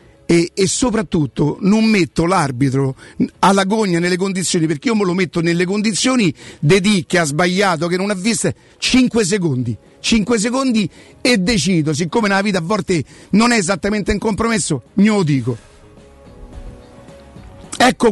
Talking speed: 150 wpm